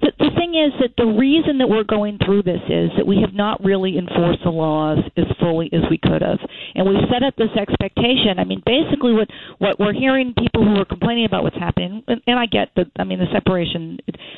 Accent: American